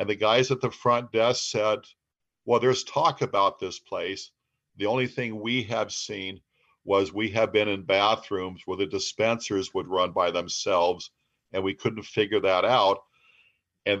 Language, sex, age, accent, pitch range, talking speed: English, male, 50-69, American, 100-120 Hz, 170 wpm